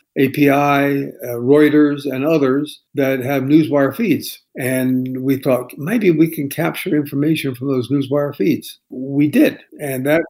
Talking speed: 145 wpm